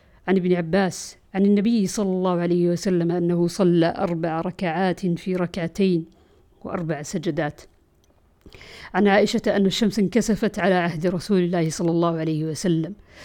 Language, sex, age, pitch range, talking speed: Arabic, female, 50-69, 175-220 Hz, 135 wpm